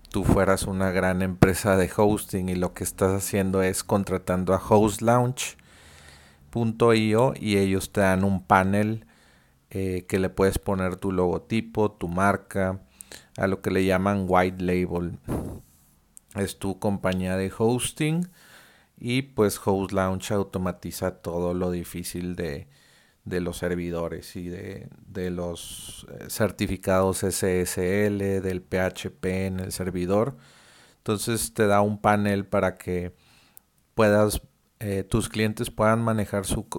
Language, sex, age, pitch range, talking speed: Spanish, male, 40-59, 90-105 Hz, 130 wpm